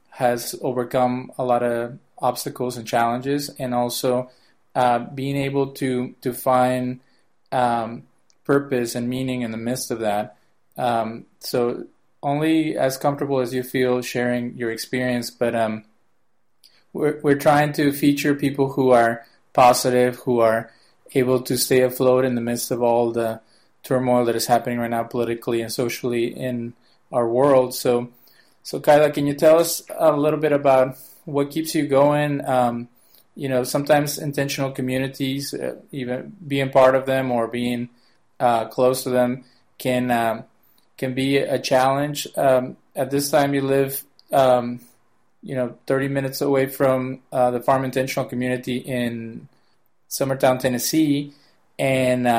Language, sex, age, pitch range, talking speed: English, male, 20-39, 120-135 Hz, 150 wpm